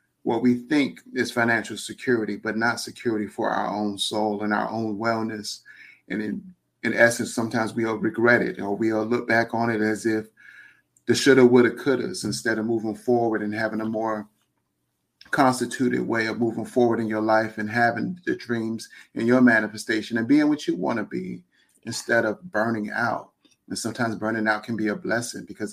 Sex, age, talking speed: male, 30-49, 195 wpm